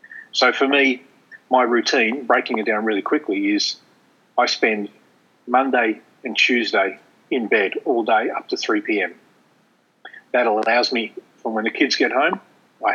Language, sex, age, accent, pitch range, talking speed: English, male, 40-59, Australian, 115-130 Hz, 155 wpm